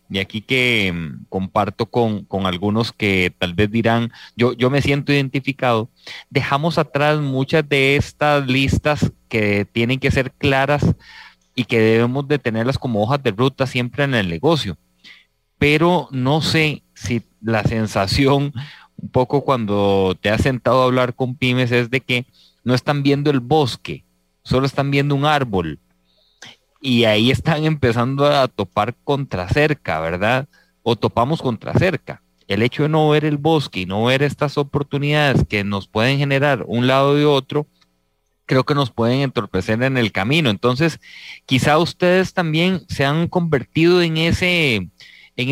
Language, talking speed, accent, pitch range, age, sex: English, 160 wpm, Mexican, 110-145 Hz, 30-49, male